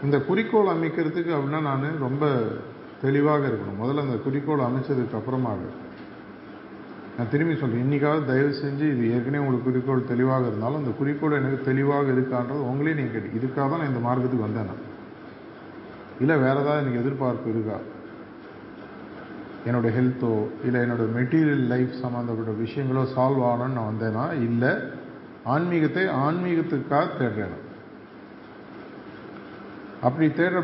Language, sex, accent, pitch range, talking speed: Tamil, male, native, 115-140 Hz, 120 wpm